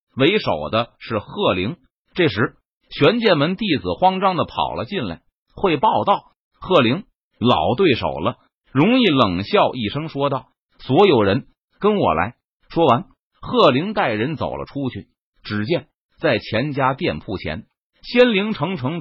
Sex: male